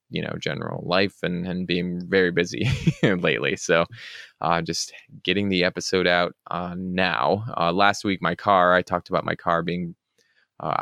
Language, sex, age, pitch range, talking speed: English, male, 20-39, 85-95 Hz, 170 wpm